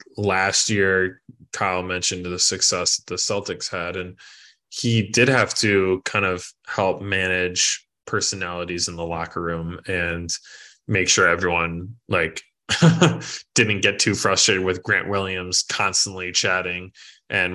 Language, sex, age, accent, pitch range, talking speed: English, male, 20-39, American, 90-105 Hz, 130 wpm